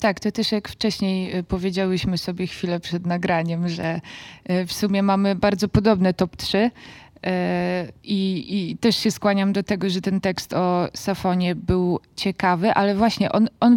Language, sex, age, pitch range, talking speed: Polish, female, 20-39, 190-225 Hz, 155 wpm